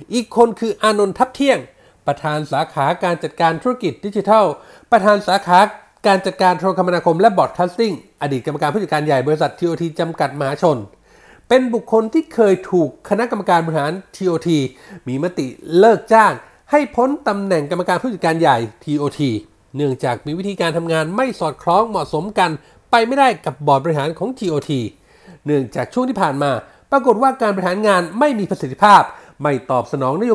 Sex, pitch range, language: male, 155-225 Hz, Thai